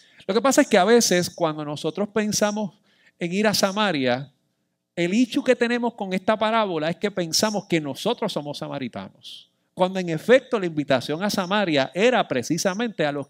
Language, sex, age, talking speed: Spanish, male, 50-69, 175 wpm